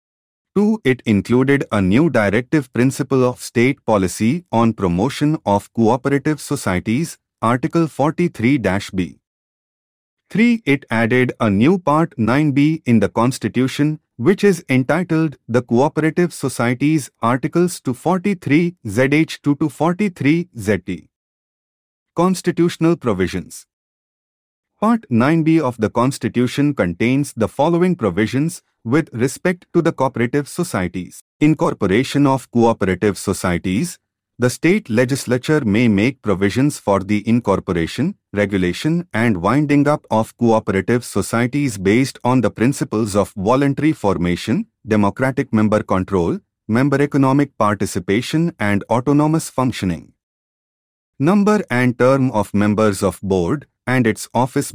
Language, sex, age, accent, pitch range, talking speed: English, male, 30-49, Indian, 105-145 Hz, 110 wpm